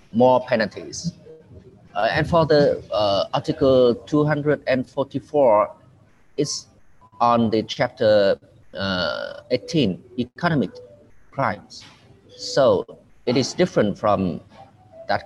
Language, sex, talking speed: English, male, 90 wpm